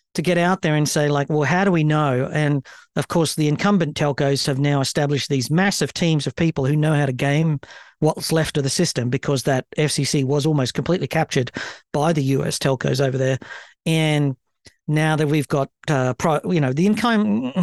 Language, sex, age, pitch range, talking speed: English, male, 40-59, 140-170 Hz, 200 wpm